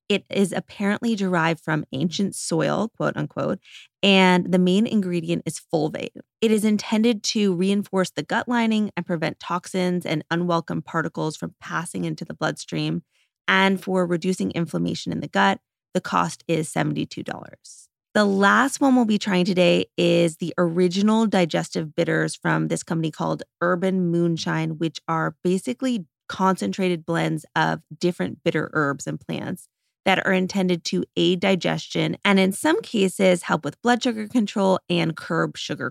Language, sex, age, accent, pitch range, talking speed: English, female, 20-39, American, 170-205 Hz, 155 wpm